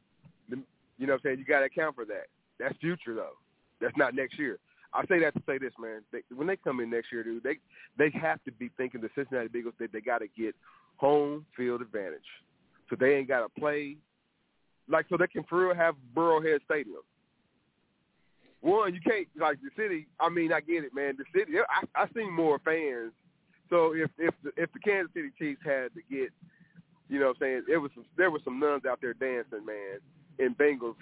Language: English